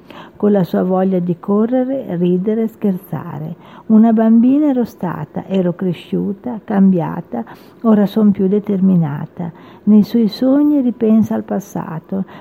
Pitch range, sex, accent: 180-225 Hz, female, native